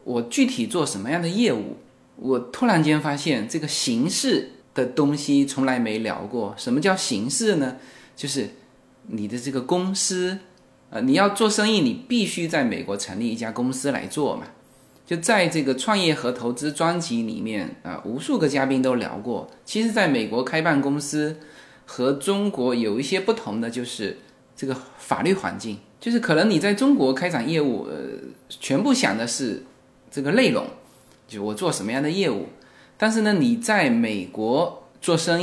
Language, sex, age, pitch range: Chinese, male, 20-39, 130-215 Hz